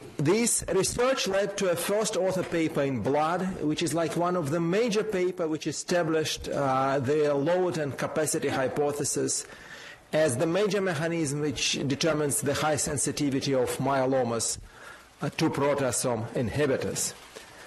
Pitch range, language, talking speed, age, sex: 145-200 Hz, English, 140 wpm, 50-69, male